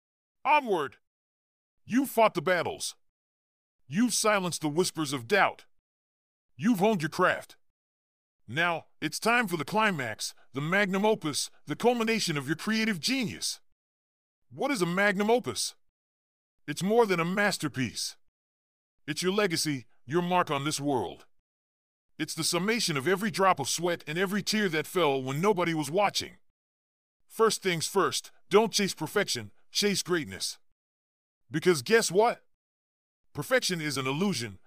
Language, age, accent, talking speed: English, 40-59, American, 140 wpm